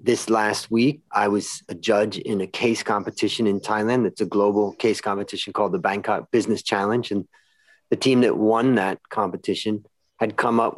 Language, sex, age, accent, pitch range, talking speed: English, male, 30-49, American, 100-120 Hz, 185 wpm